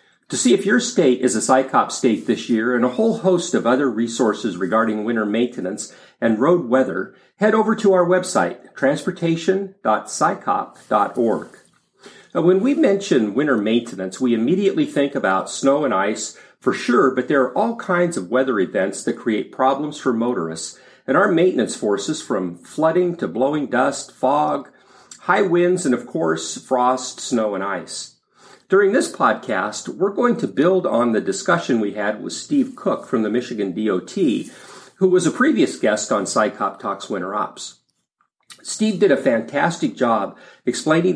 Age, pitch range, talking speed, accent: 50-69, 115-180 Hz, 160 wpm, American